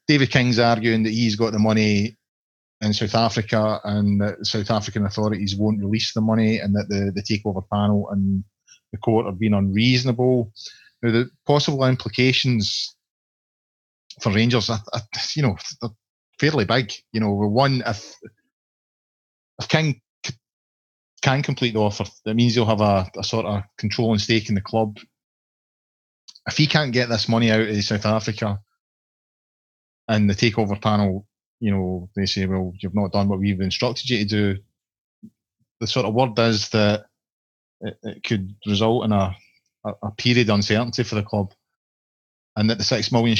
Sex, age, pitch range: male, 30-49, 105-120 Hz